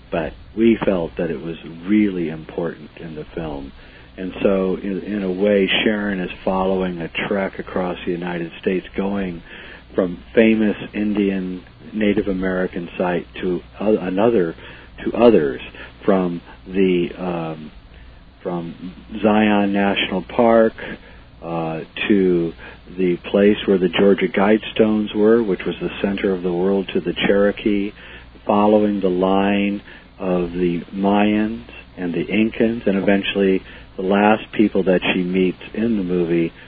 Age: 50-69